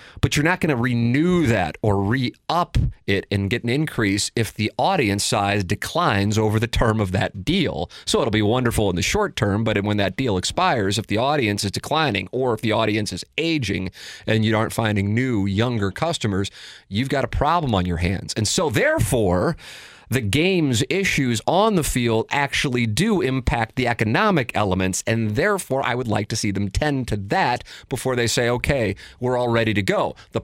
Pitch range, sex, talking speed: 105-135 Hz, male, 195 wpm